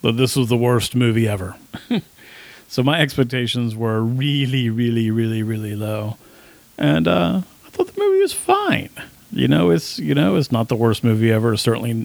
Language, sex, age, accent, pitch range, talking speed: English, male, 40-59, American, 110-135 Hz, 180 wpm